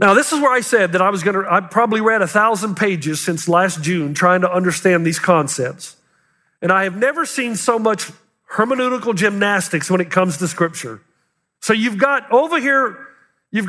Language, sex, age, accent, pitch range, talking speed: English, male, 40-59, American, 190-250 Hz, 195 wpm